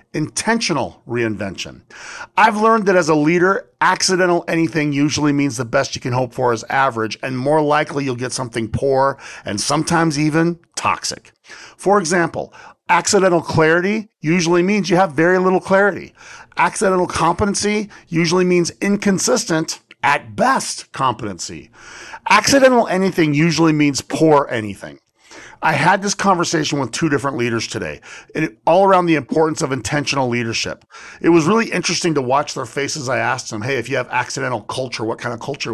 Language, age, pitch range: English, 40-59, 120-175 Hz